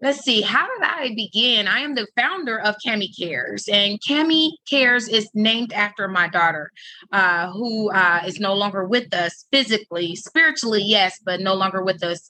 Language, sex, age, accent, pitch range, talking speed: English, female, 30-49, American, 180-220 Hz, 180 wpm